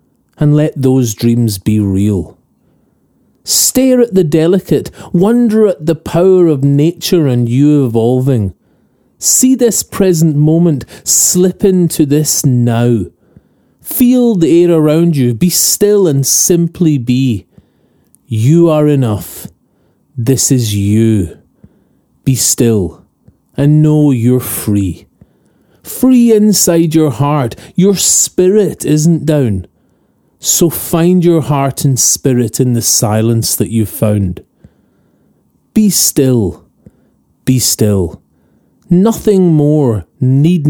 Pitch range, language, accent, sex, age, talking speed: 115-170 Hz, English, British, male, 30-49, 110 wpm